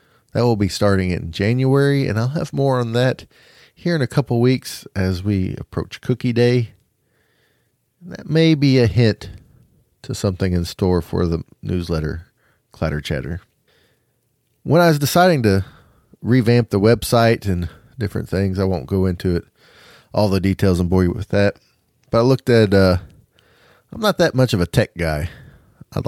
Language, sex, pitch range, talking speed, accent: English, male, 90-120 Hz, 170 wpm, American